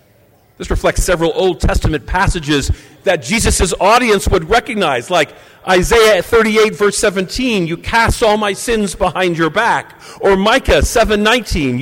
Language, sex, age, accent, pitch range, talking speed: English, male, 50-69, American, 150-215 Hz, 135 wpm